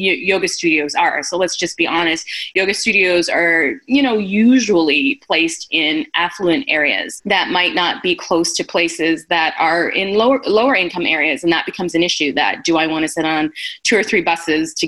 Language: English